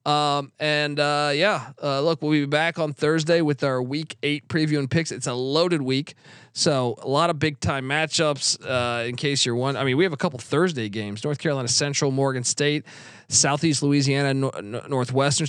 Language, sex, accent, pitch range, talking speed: English, male, American, 140-175 Hz, 195 wpm